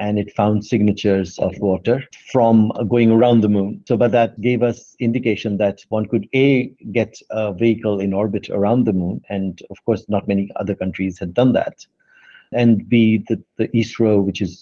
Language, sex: English, male